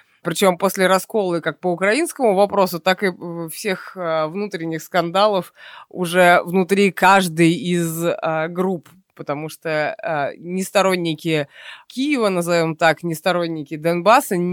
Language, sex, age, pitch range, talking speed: Russian, female, 20-39, 155-190 Hz, 110 wpm